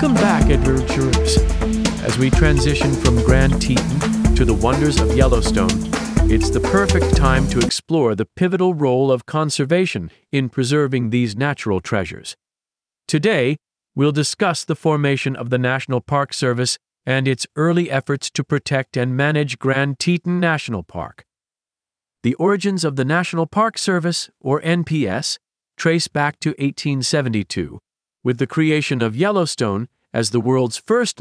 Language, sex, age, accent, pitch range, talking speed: English, male, 40-59, American, 105-150 Hz, 145 wpm